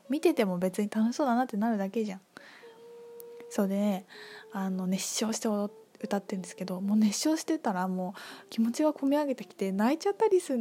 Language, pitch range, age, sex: Japanese, 200-265 Hz, 20-39, female